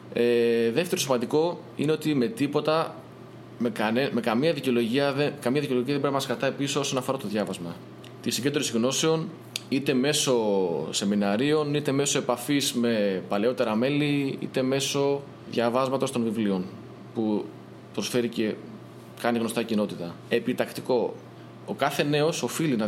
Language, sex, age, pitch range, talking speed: Greek, male, 20-39, 110-140 Hz, 140 wpm